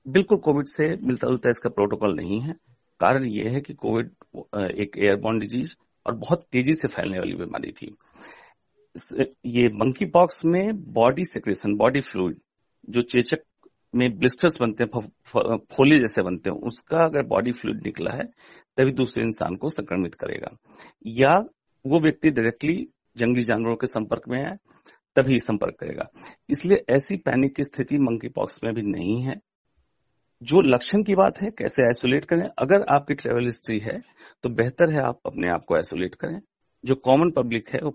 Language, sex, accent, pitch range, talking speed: Hindi, male, native, 115-155 Hz, 170 wpm